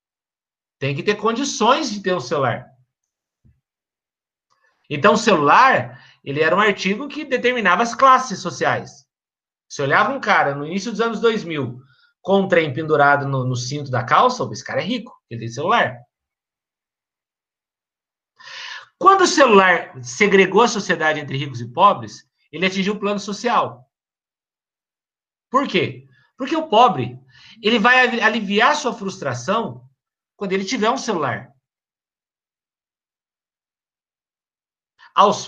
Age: 50-69